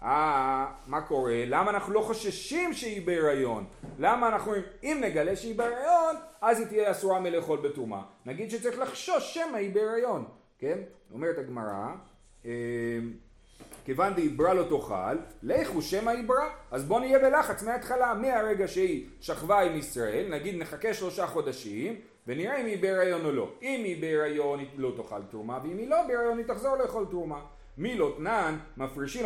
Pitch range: 165-240 Hz